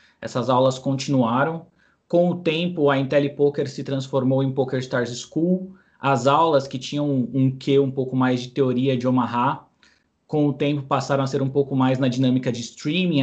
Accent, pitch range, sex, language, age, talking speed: Brazilian, 125-145 Hz, male, Portuguese, 20-39, 185 wpm